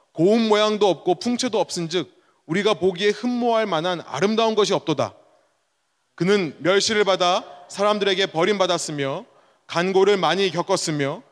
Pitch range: 165-210 Hz